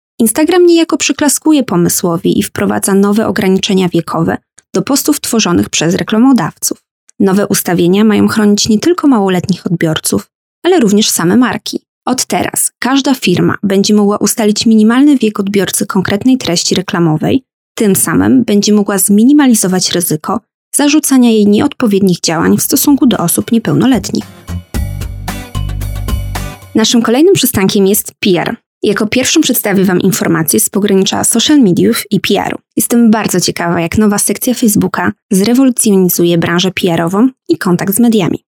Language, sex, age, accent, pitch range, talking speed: Polish, female, 20-39, native, 185-240 Hz, 130 wpm